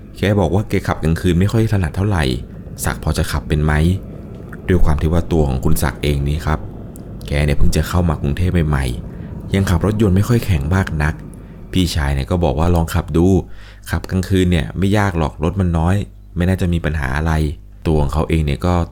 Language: Thai